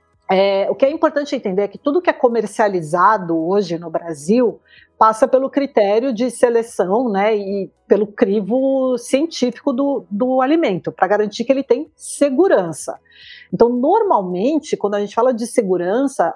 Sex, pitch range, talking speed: female, 200-265 Hz, 155 wpm